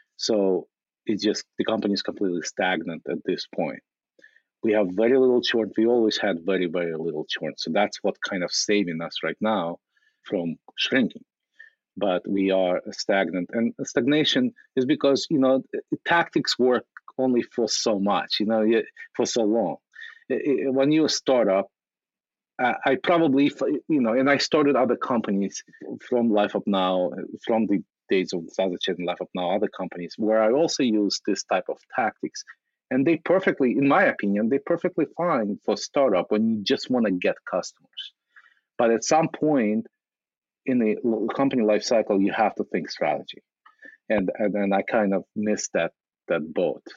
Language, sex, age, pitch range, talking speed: English, male, 40-59, 95-135 Hz, 170 wpm